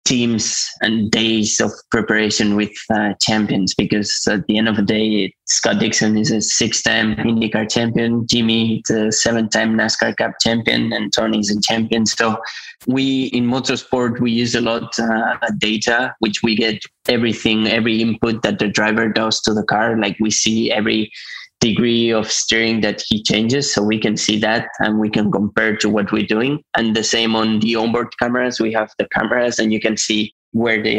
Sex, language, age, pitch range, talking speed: male, English, 20-39, 110-120 Hz, 190 wpm